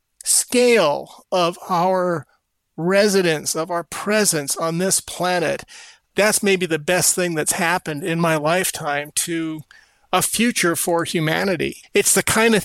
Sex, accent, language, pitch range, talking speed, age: male, American, English, 180-240 Hz, 140 wpm, 50-69